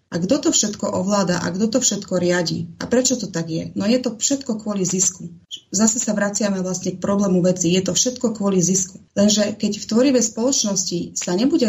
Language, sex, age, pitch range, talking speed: Slovak, female, 30-49, 185-220 Hz, 205 wpm